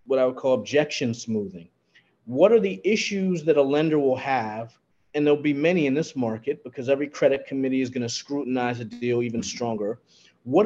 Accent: American